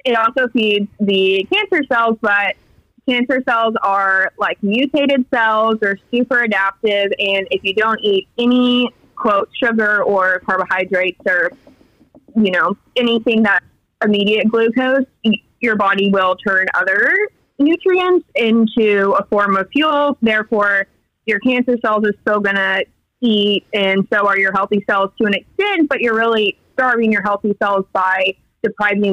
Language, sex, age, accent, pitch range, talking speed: English, female, 20-39, American, 200-250 Hz, 145 wpm